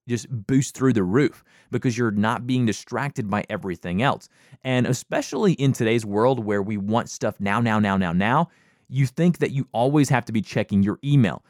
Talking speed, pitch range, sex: 200 wpm, 110-145 Hz, male